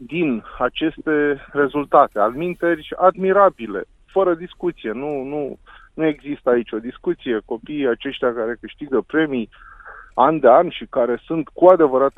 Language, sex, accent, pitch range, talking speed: Romanian, male, native, 115-160 Hz, 135 wpm